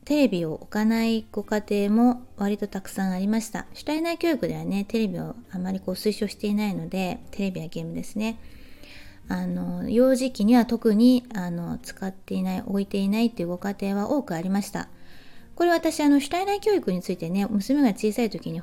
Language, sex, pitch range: Japanese, female, 190-250 Hz